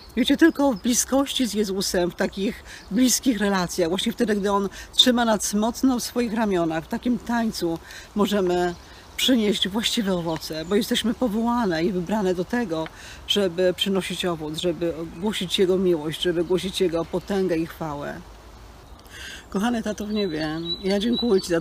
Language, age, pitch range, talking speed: Polish, 40-59, 170-205 Hz, 155 wpm